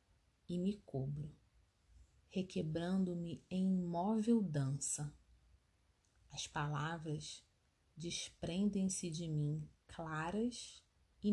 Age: 30-49